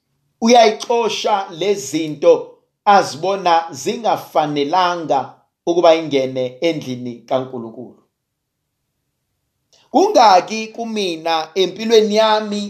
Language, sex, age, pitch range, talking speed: English, male, 50-69, 170-260 Hz, 60 wpm